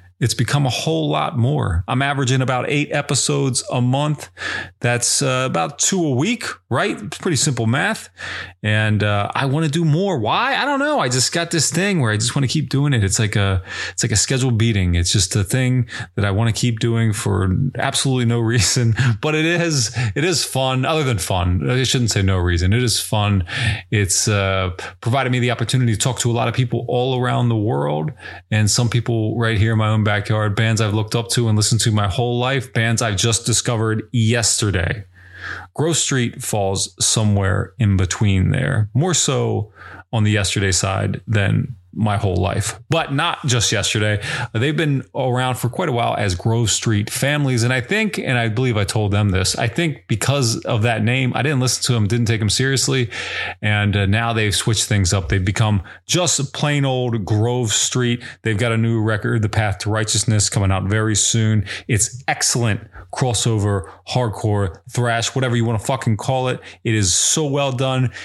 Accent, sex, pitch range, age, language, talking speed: American, male, 105-130 Hz, 30-49, English, 205 wpm